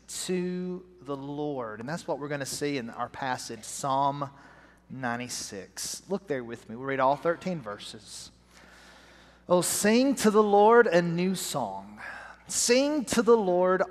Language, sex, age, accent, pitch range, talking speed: English, male, 40-59, American, 135-200 Hz, 155 wpm